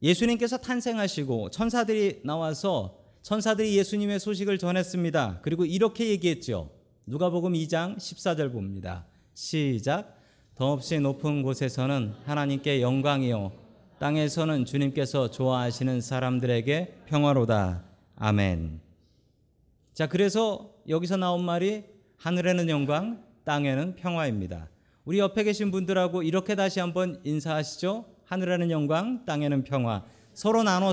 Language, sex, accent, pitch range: Korean, male, native, 125-190 Hz